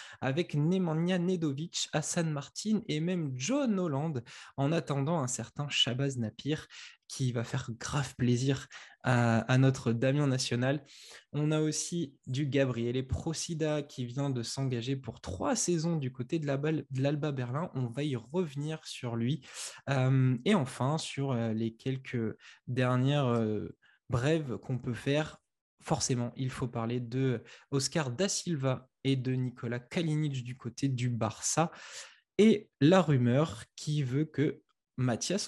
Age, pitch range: 20-39, 125-160 Hz